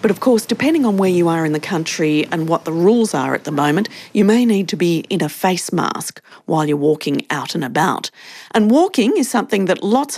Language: English